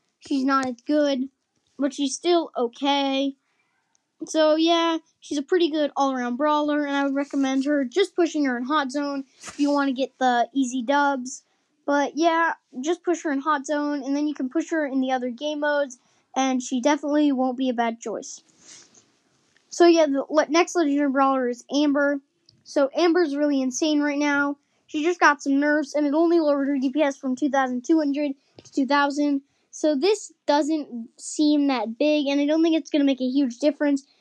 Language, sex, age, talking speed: English, female, 10-29, 190 wpm